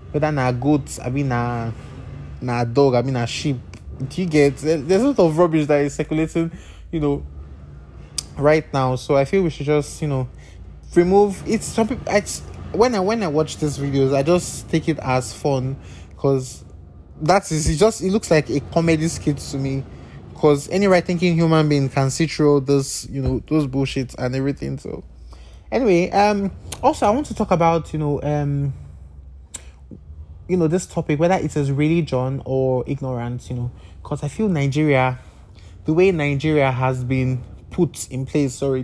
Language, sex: English, male